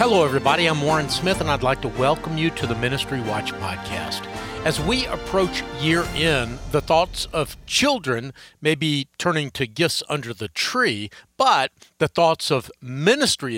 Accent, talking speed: American, 170 wpm